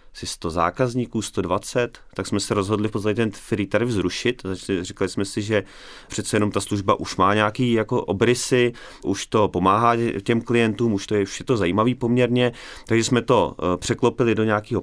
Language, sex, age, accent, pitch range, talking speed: Czech, male, 30-49, native, 95-110 Hz, 185 wpm